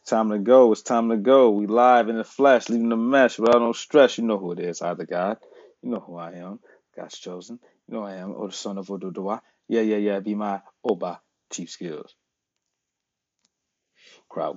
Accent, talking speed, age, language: American, 220 wpm, 30-49, English